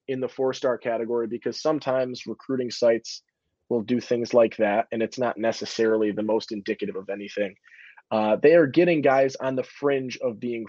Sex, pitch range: male, 115-135 Hz